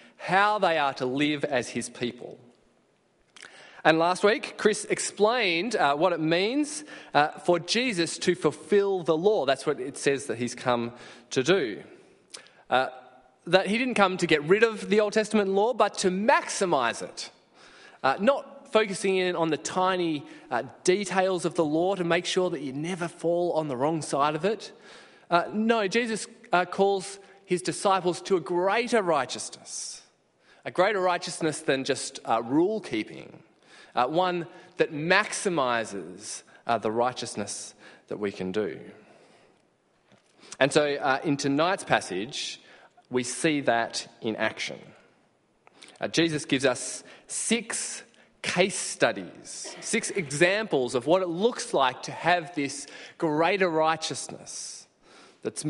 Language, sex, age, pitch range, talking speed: English, male, 20-39, 140-195 Hz, 145 wpm